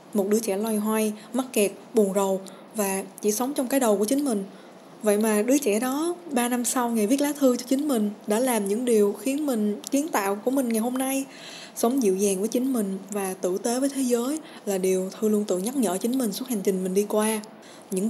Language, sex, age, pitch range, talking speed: Vietnamese, female, 20-39, 195-240 Hz, 245 wpm